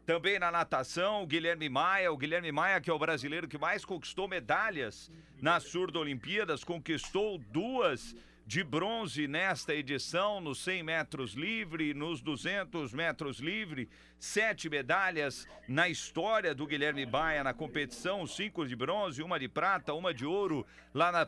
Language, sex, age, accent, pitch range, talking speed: Portuguese, male, 50-69, Brazilian, 145-185 Hz, 150 wpm